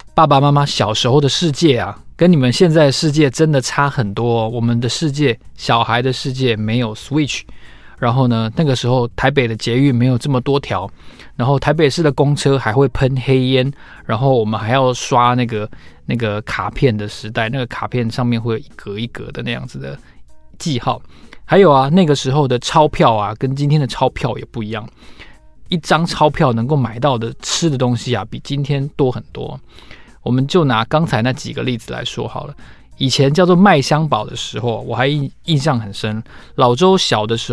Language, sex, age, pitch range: Chinese, male, 20-39, 115-150 Hz